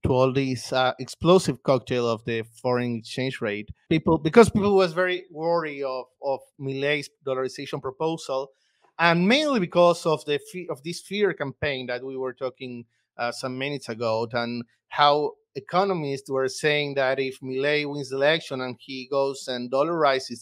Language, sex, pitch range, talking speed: English, male, 130-160 Hz, 160 wpm